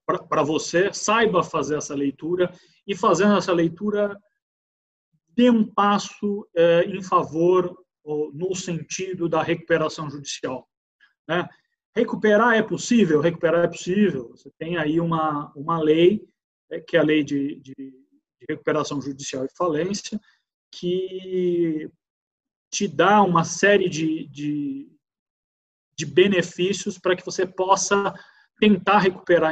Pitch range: 160-210 Hz